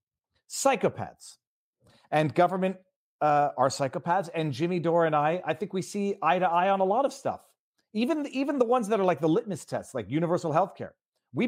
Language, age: English, 40-59